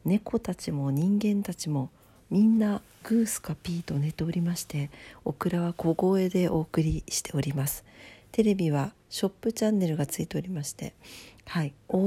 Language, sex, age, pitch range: Japanese, female, 50-69, 145-200 Hz